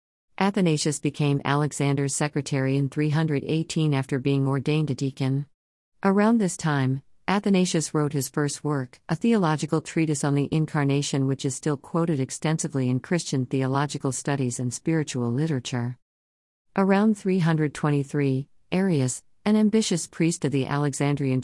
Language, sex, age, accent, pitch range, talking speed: Malayalam, female, 50-69, American, 135-165 Hz, 130 wpm